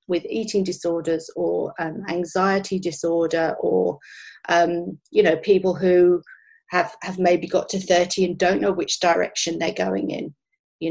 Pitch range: 170-195 Hz